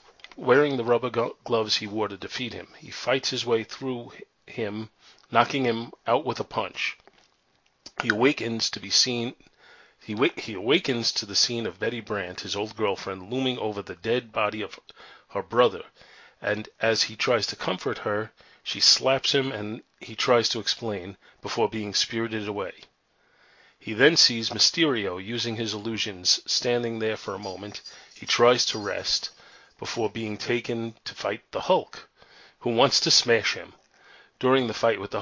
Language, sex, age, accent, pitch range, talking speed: English, male, 40-59, American, 105-120 Hz, 165 wpm